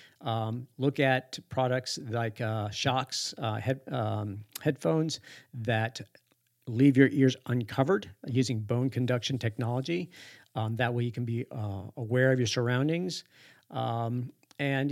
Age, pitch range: 50-69, 115-135 Hz